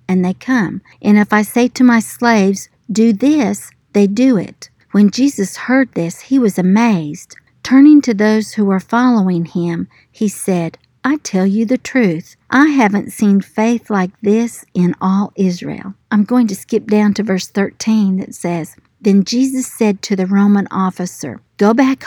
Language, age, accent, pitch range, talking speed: English, 50-69, American, 185-225 Hz, 175 wpm